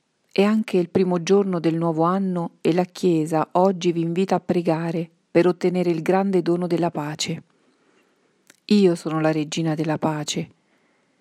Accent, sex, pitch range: native, female, 170-190 Hz